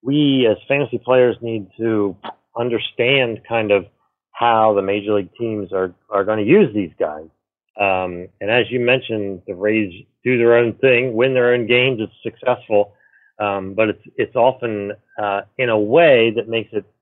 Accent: American